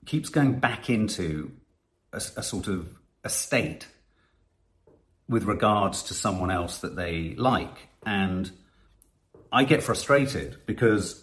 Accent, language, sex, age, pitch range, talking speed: British, English, male, 40-59, 90-125 Hz, 125 wpm